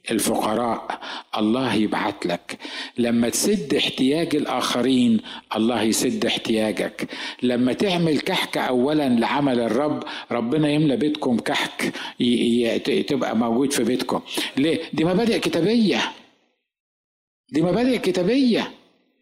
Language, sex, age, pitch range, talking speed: Arabic, male, 50-69, 135-210 Hz, 100 wpm